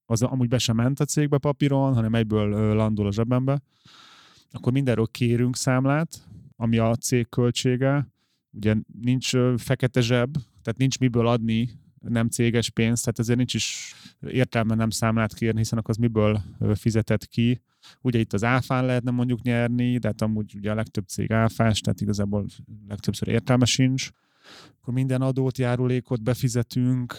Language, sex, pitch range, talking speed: Hungarian, male, 110-125 Hz, 155 wpm